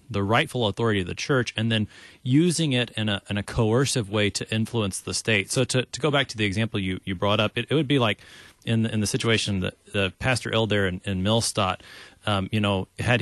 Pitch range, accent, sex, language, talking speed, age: 100-125 Hz, American, male, English, 240 wpm, 30-49